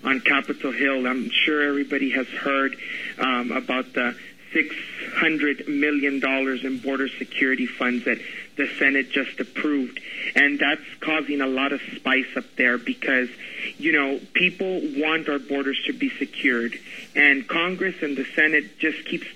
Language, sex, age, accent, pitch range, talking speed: English, male, 40-59, American, 135-165 Hz, 150 wpm